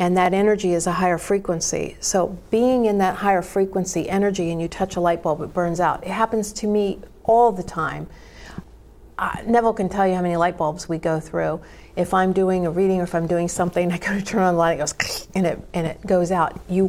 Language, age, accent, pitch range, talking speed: English, 50-69, American, 170-195 Hz, 240 wpm